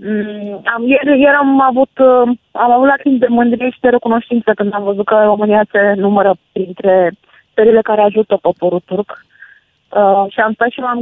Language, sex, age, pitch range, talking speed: Romanian, female, 20-39, 205-245 Hz, 175 wpm